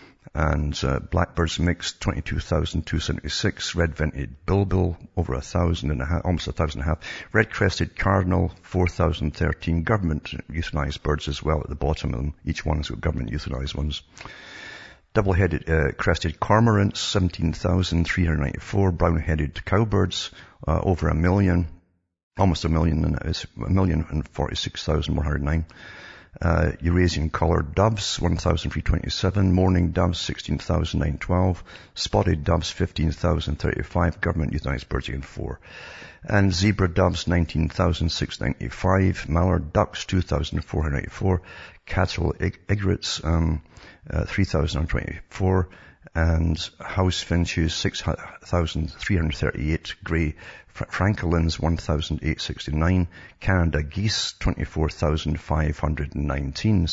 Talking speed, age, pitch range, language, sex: 105 wpm, 60-79, 75-90 Hz, English, male